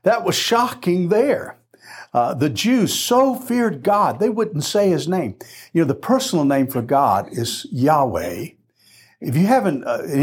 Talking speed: 175 wpm